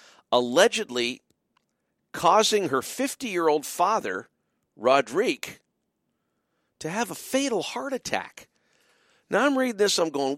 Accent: American